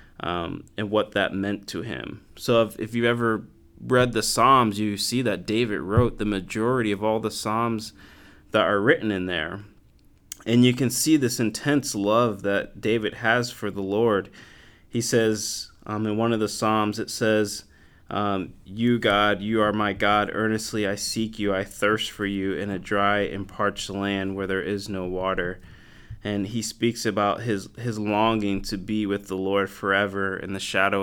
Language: English